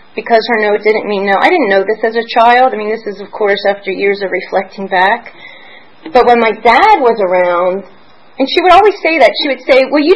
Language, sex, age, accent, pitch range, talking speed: English, female, 30-49, American, 205-270 Hz, 240 wpm